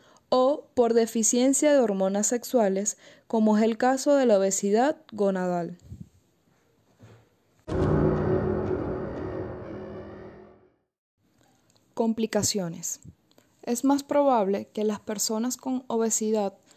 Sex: female